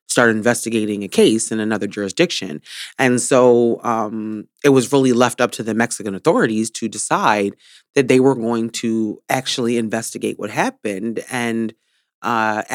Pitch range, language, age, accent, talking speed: 110-125 Hz, English, 30-49, American, 150 wpm